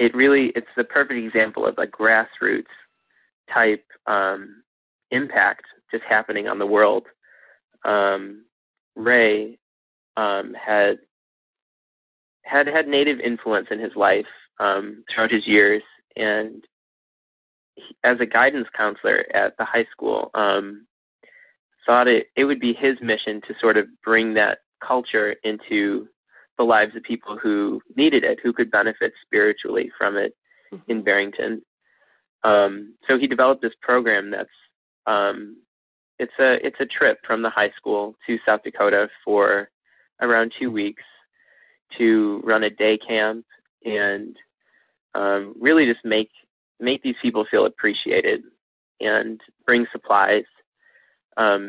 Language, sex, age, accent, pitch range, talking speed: English, male, 20-39, American, 105-135 Hz, 130 wpm